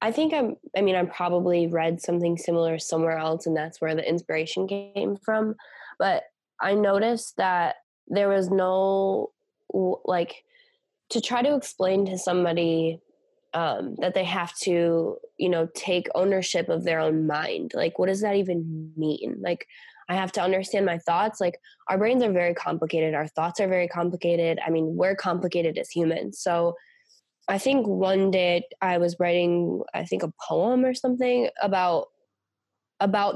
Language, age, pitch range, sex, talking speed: English, 10-29, 165-200 Hz, female, 165 wpm